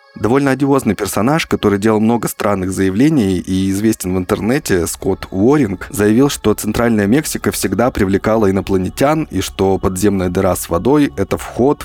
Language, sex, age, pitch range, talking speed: Russian, male, 20-39, 90-110 Hz, 145 wpm